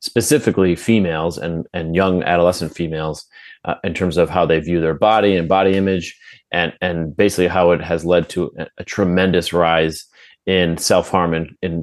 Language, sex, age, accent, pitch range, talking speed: English, male, 30-49, American, 85-100 Hz, 180 wpm